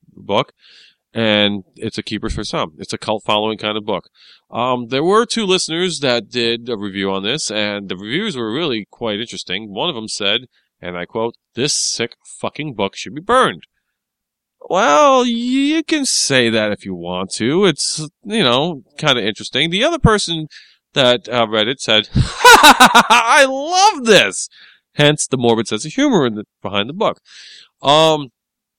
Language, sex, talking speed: English, male, 175 wpm